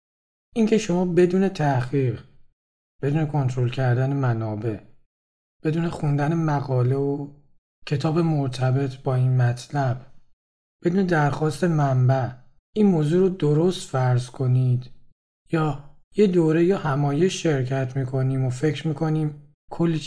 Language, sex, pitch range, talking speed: Persian, male, 125-160 Hz, 110 wpm